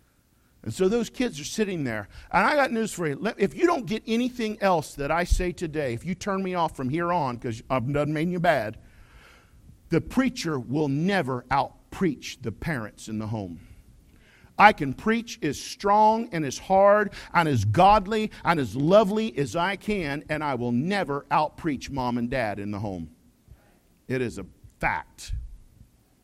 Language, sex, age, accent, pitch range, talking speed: English, male, 50-69, American, 140-215 Hz, 185 wpm